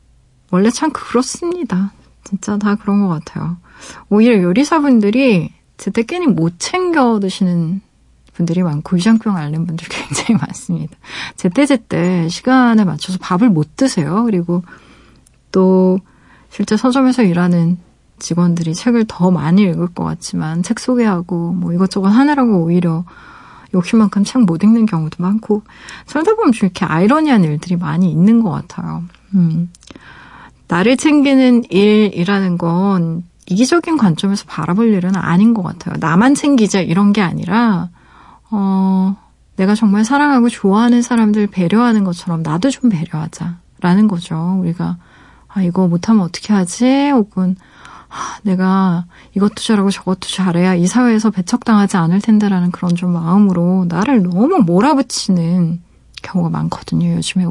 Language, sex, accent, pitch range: Korean, female, native, 175-225 Hz